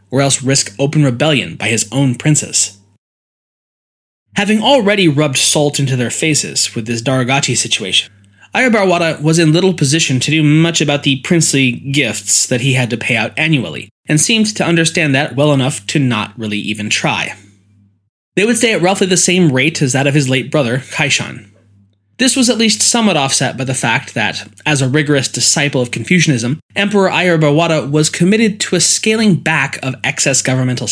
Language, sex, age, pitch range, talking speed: English, male, 20-39, 120-165 Hz, 180 wpm